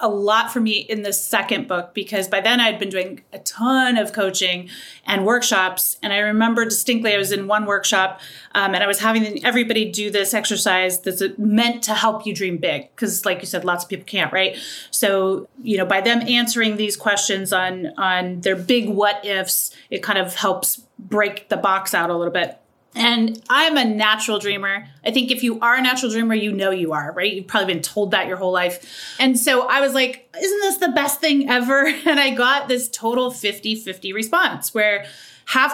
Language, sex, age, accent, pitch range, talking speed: English, female, 30-49, American, 195-245 Hz, 210 wpm